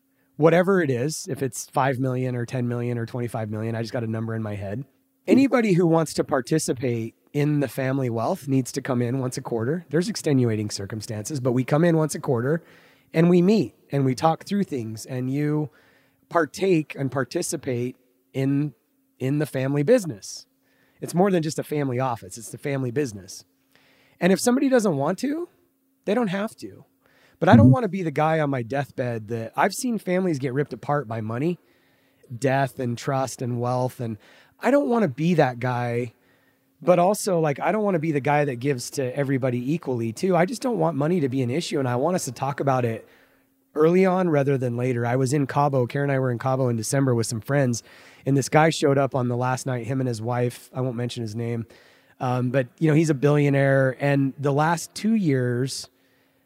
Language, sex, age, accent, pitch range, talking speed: English, male, 30-49, American, 125-160 Hz, 215 wpm